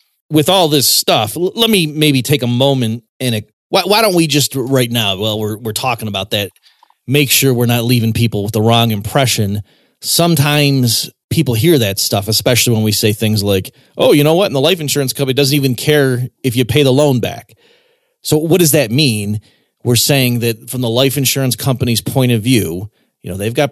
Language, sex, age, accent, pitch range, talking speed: English, male, 30-49, American, 115-145 Hz, 210 wpm